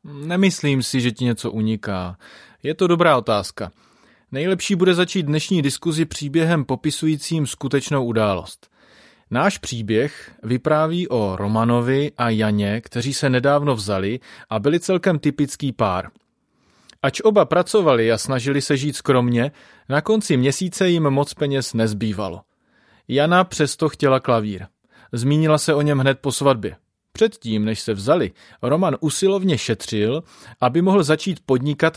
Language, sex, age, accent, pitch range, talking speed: Czech, male, 30-49, native, 115-155 Hz, 135 wpm